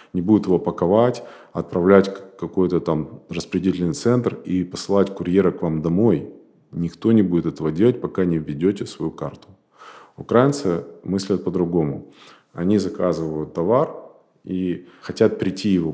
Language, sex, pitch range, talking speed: Russian, male, 85-110 Hz, 135 wpm